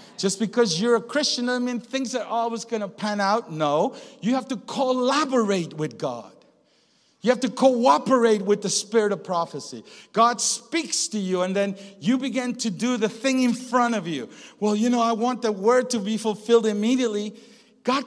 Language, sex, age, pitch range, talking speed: English, male, 50-69, 205-250 Hz, 195 wpm